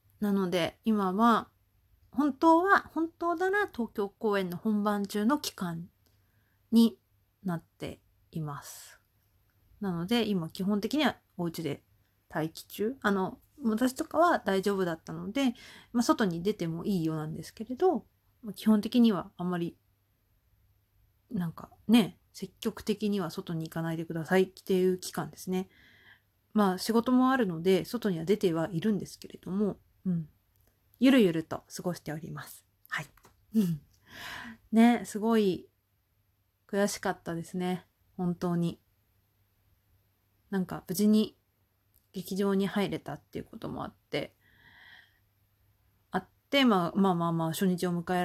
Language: Japanese